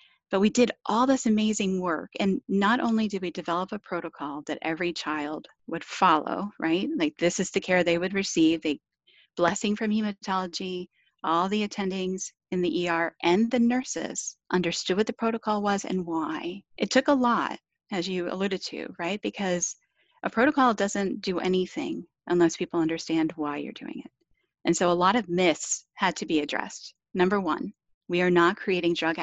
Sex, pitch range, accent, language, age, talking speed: female, 175-230 Hz, American, English, 30-49, 180 wpm